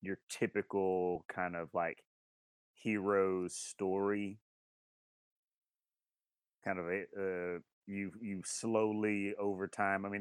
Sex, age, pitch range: male, 30-49, 90-100 Hz